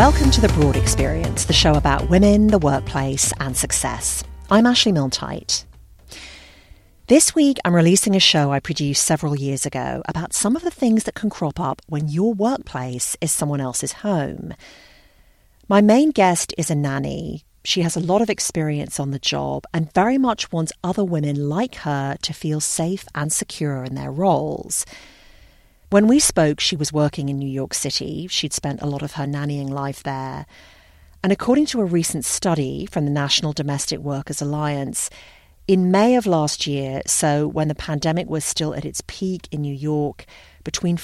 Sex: female